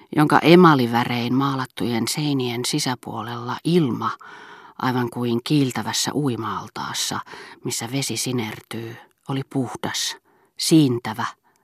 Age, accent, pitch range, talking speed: 40-59, native, 120-145 Hz, 80 wpm